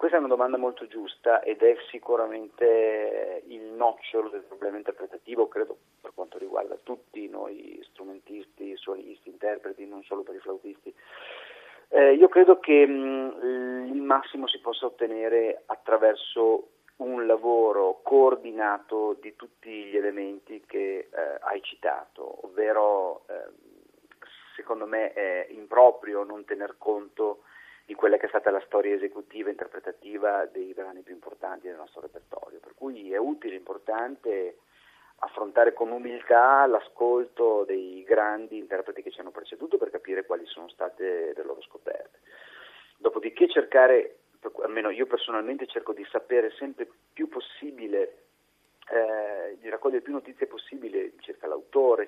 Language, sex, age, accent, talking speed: Italian, male, 40-59, native, 140 wpm